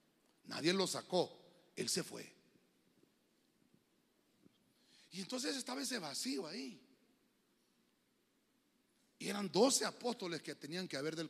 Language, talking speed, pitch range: Spanish, 110 wpm, 195-260 Hz